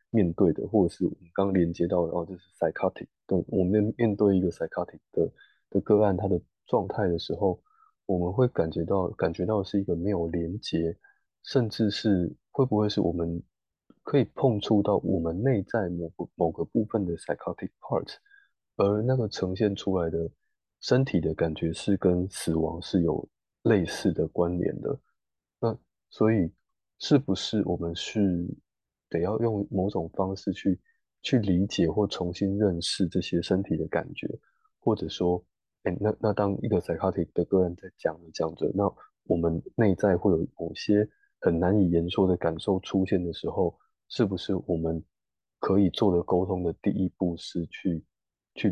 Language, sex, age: Chinese, male, 20-39